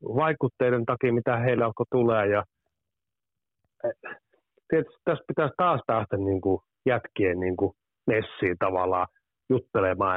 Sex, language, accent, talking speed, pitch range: male, Finnish, native, 105 wpm, 105-145 Hz